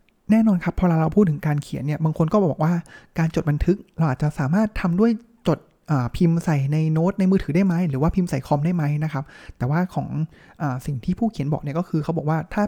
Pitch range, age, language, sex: 140-175 Hz, 20-39, Thai, male